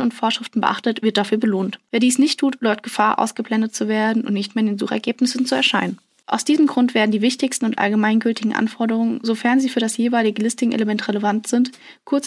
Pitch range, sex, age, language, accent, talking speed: 220-250 Hz, female, 10-29, German, German, 200 wpm